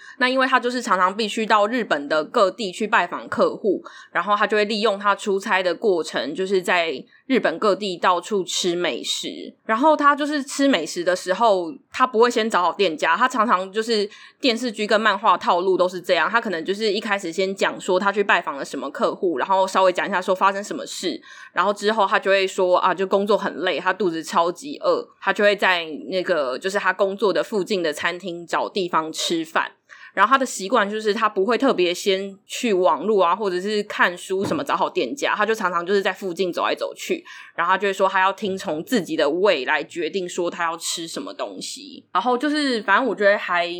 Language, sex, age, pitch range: Chinese, female, 20-39, 185-240 Hz